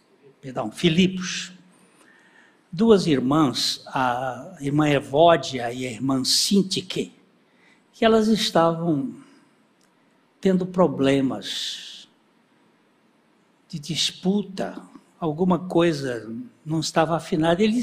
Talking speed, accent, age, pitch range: 75 wpm, Brazilian, 60-79, 160-220 Hz